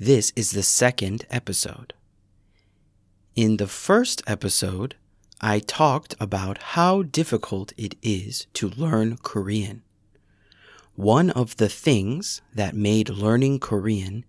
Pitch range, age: 100-125 Hz, 30-49